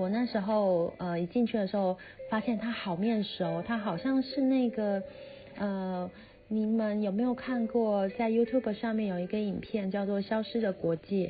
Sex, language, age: female, Chinese, 30-49